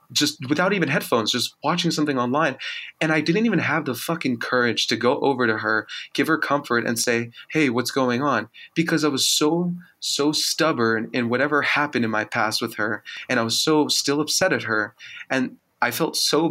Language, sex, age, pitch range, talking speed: English, male, 20-39, 115-140 Hz, 205 wpm